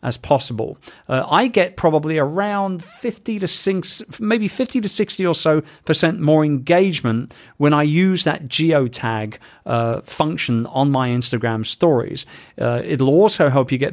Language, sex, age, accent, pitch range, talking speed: English, male, 40-59, British, 120-165 Hz, 160 wpm